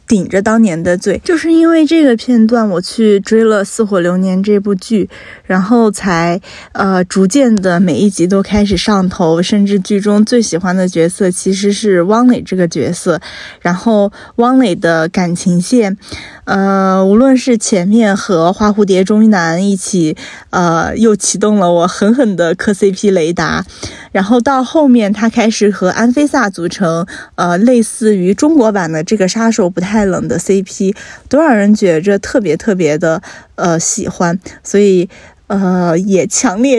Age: 10-29